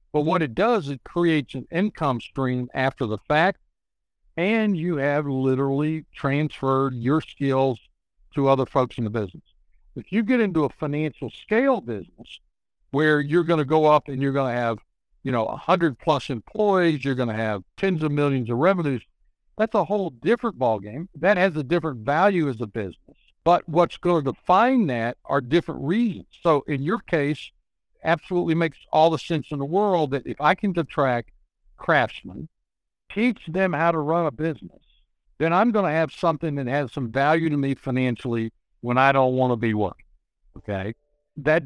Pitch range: 130-165 Hz